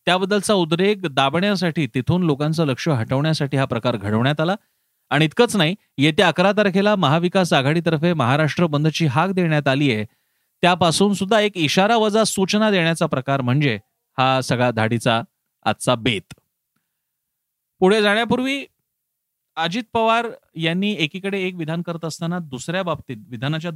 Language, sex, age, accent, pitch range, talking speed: Marathi, male, 30-49, native, 135-190 Hz, 135 wpm